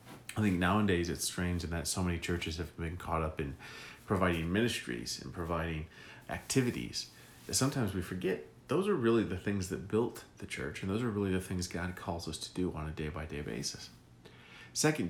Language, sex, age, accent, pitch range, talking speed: English, male, 40-59, American, 90-110 Hz, 195 wpm